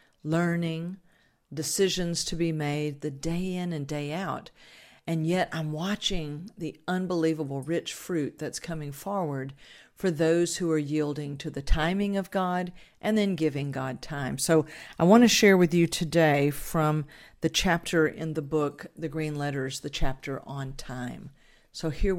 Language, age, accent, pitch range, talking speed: English, 50-69, American, 145-175 Hz, 160 wpm